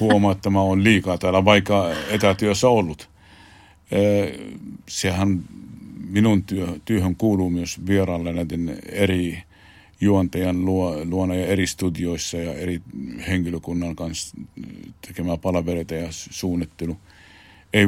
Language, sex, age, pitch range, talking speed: Finnish, male, 50-69, 90-100 Hz, 105 wpm